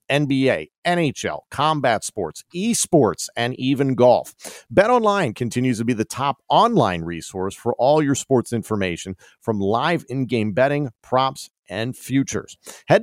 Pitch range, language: 110-140 Hz, English